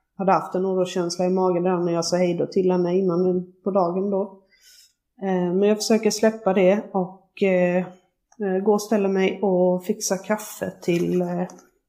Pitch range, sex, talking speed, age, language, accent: 180-210 Hz, female, 165 wpm, 30-49, Swedish, native